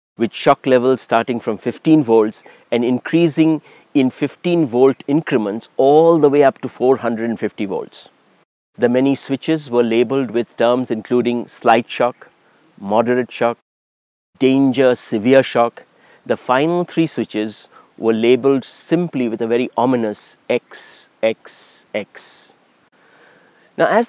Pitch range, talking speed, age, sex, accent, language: 120-150 Hz, 125 wpm, 50-69, male, Indian, English